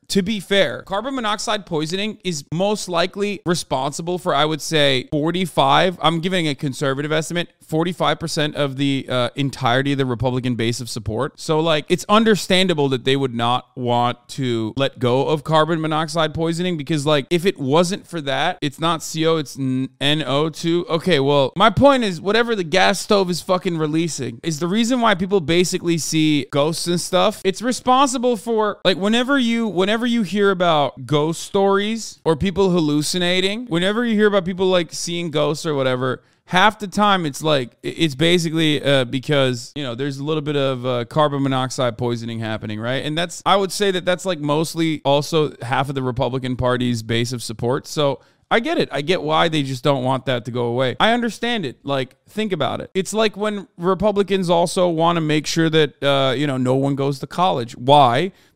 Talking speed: 195 wpm